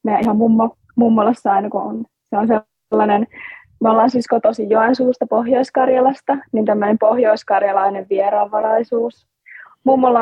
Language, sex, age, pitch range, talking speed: Finnish, female, 20-39, 205-250 Hz, 125 wpm